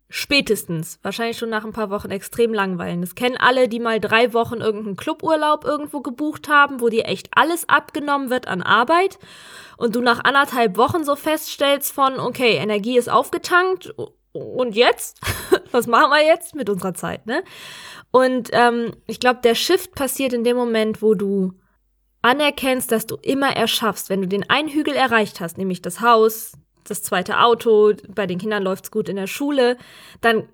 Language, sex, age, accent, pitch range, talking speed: German, female, 10-29, German, 220-305 Hz, 180 wpm